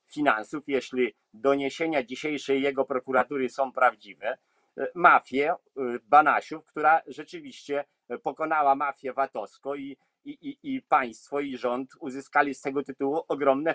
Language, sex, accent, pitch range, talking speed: Polish, male, native, 135-165 Hz, 110 wpm